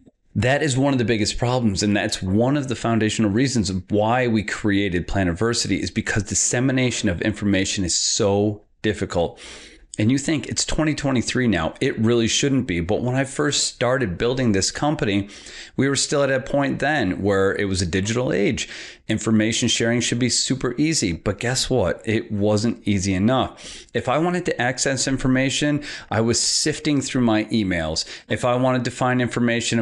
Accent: American